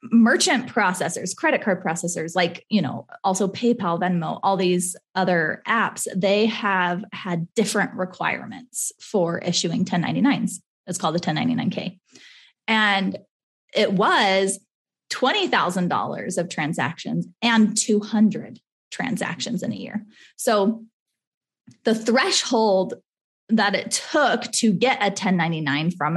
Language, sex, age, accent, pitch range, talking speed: English, female, 20-39, American, 185-240 Hz, 115 wpm